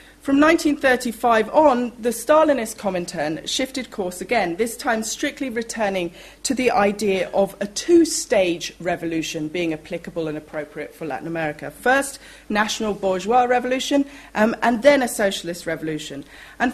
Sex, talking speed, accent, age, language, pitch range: female, 140 wpm, British, 40-59, English, 175-270 Hz